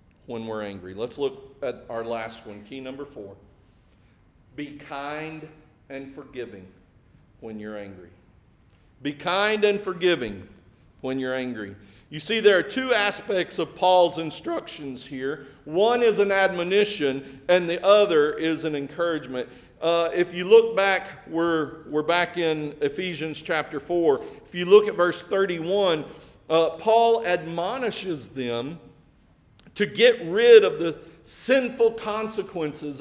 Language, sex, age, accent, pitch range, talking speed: English, male, 40-59, American, 140-225 Hz, 135 wpm